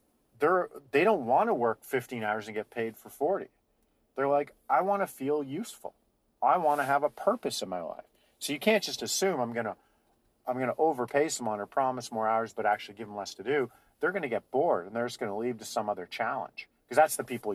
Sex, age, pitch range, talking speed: male, 40-59, 115-140 Hz, 245 wpm